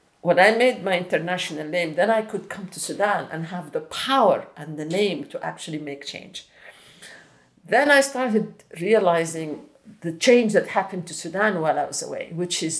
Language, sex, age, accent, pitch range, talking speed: English, female, 50-69, Italian, 155-195 Hz, 185 wpm